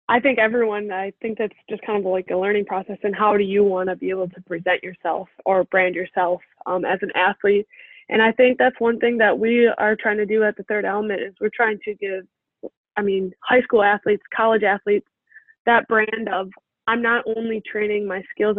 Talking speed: 220 wpm